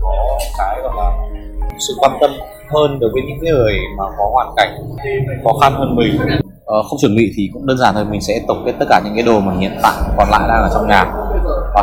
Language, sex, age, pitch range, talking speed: Vietnamese, male, 20-39, 95-115 Hz, 245 wpm